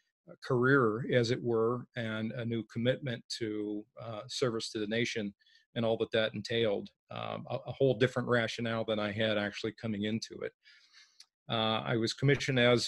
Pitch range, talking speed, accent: 105-125 Hz, 175 wpm, American